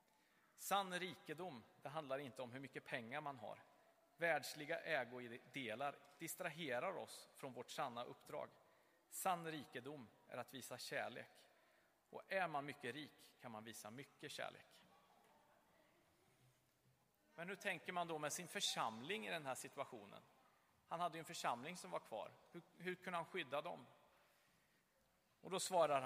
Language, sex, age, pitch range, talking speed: Swedish, male, 40-59, 130-175 Hz, 145 wpm